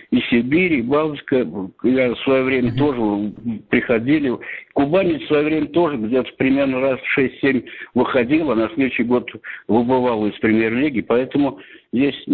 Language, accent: Russian, native